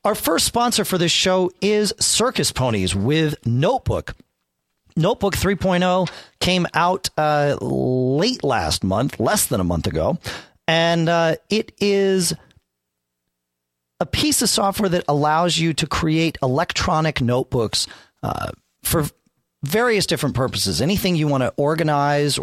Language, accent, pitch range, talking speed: English, American, 120-170 Hz, 130 wpm